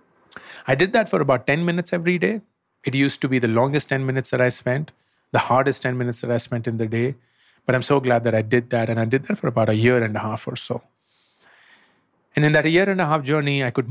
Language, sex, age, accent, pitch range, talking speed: English, male, 30-49, Indian, 115-140 Hz, 265 wpm